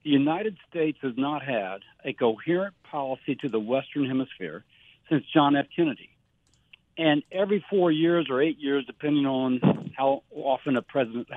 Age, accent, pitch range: 60-79, American, 135-165 Hz